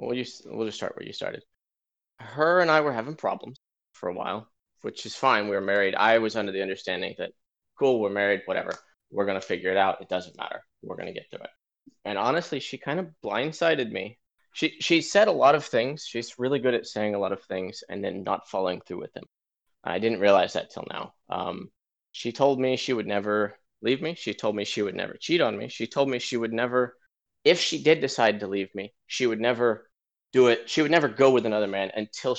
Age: 20-39